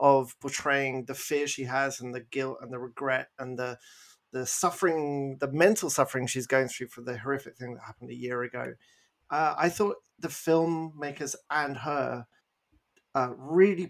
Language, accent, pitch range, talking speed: English, British, 130-145 Hz, 175 wpm